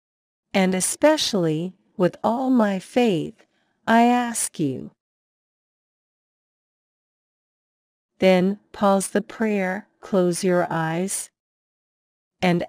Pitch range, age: 170-240 Hz, 40-59